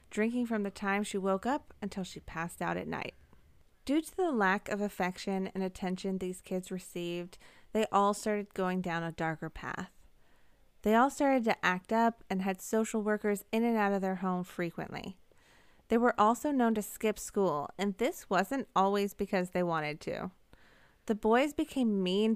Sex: female